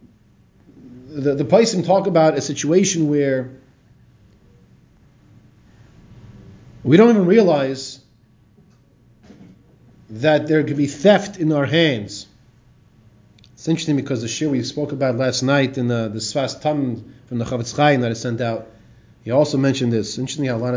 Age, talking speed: 30-49, 150 wpm